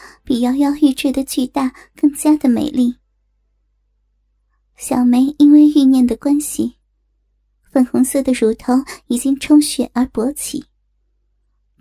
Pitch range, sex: 255-290 Hz, male